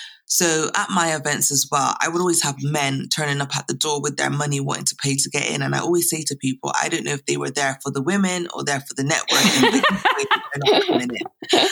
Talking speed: 235 wpm